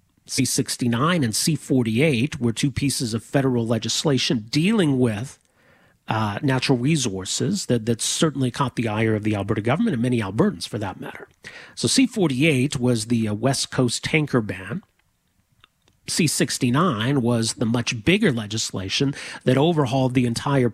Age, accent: 40-59, American